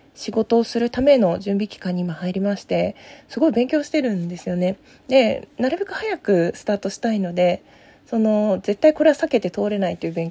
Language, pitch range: Japanese, 185-250 Hz